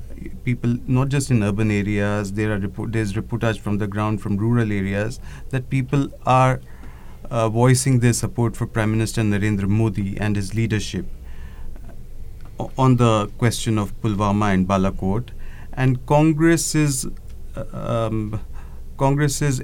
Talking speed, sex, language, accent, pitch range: 125 wpm, male, English, Indian, 105-130 Hz